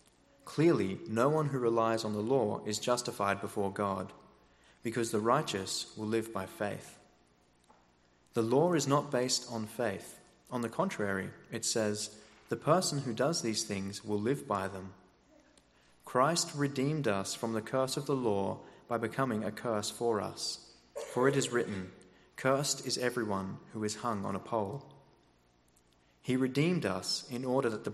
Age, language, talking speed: 30-49, English, 165 wpm